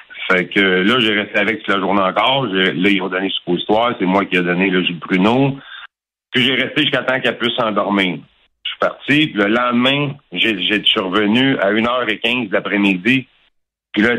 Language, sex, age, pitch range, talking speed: French, male, 60-79, 95-120 Hz, 205 wpm